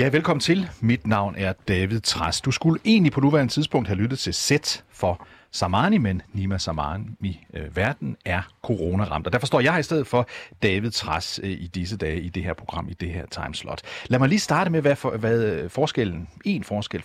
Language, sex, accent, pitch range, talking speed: Danish, male, native, 90-130 Hz, 210 wpm